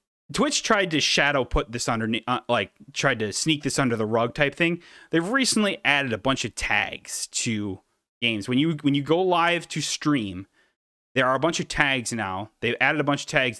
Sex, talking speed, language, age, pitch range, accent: male, 210 wpm, English, 30-49, 115-165 Hz, American